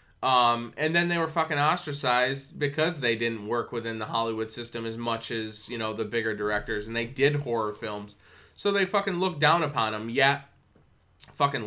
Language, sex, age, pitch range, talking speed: English, male, 20-39, 115-135 Hz, 190 wpm